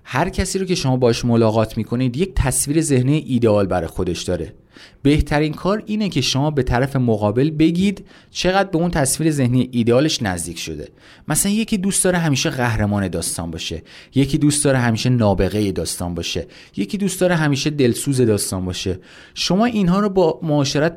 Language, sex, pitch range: Persian, male, 105-155 Hz